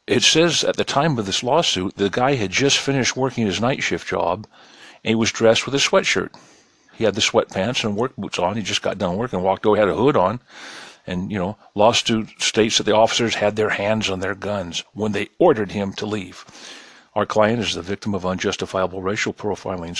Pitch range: 95-120 Hz